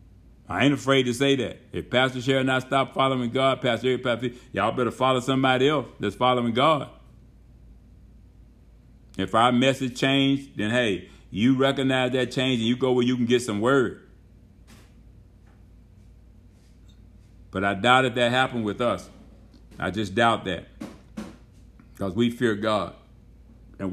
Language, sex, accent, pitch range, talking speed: English, male, American, 100-125 Hz, 155 wpm